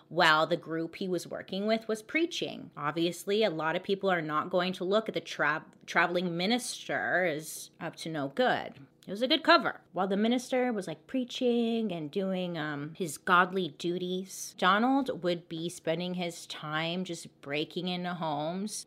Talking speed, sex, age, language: 175 wpm, female, 30-49, English